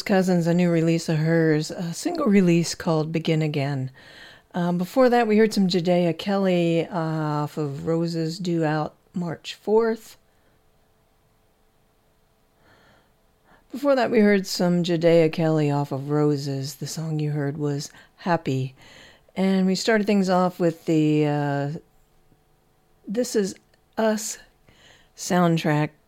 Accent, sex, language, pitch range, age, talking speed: American, female, English, 155-195 Hz, 50-69, 125 wpm